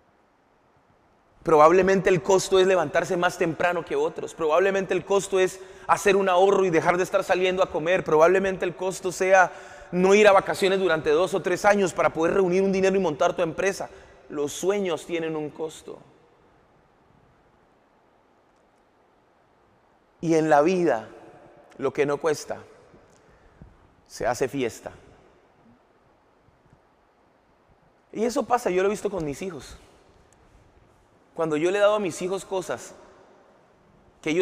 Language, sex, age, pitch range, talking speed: Spanish, male, 30-49, 155-190 Hz, 140 wpm